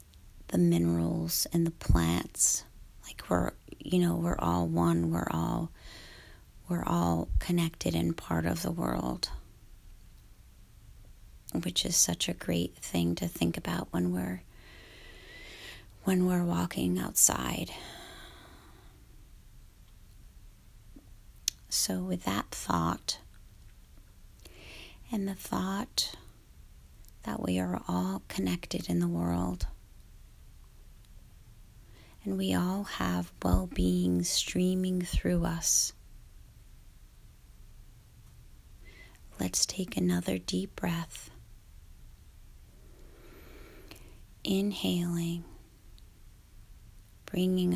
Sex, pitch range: female, 85-110 Hz